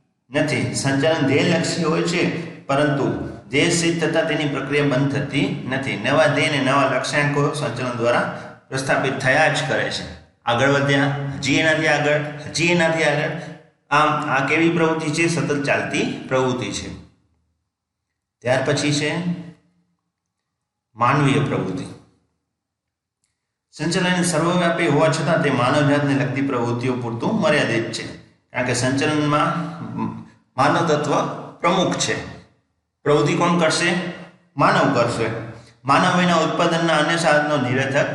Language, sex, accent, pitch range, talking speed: Gujarati, male, native, 125-155 Hz, 90 wpm